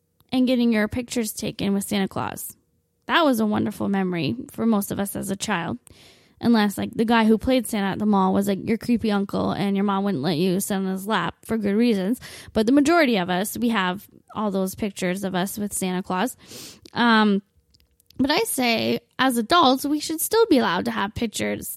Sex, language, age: female, English, 10-29